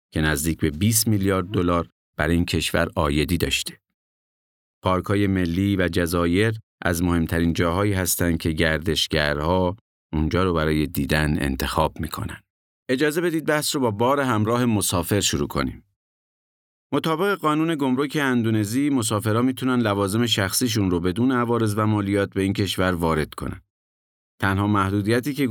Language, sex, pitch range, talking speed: Persian, male, 85-115 Hz, 135 wpm